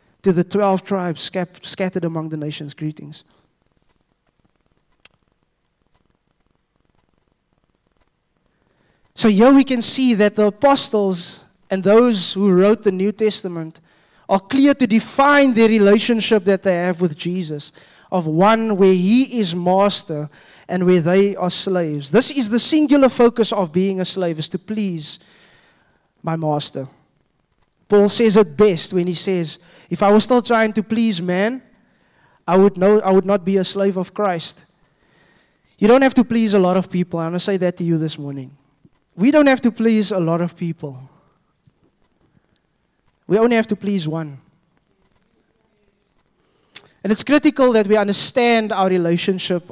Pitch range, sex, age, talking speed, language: 175-220 Hz, male, 20-39, 150 wpm, English